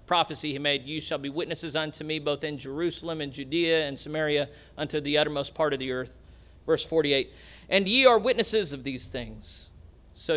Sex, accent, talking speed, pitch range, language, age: male, American, 190 wpm, 130-175 Hz, English, 40-59